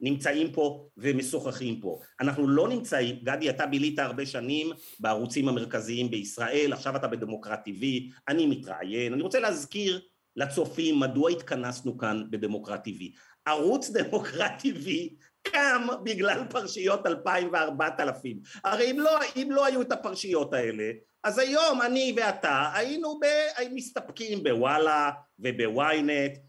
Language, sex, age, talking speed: Hebrew, male, 50-69, 125 wpm